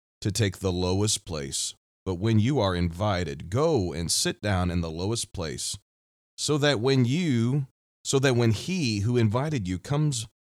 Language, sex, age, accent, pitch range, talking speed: English, male, 40-59, American, 85-120 Hz, 170 wpm